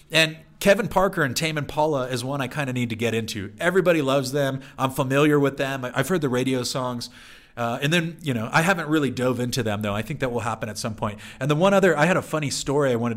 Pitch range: 120-155 Hz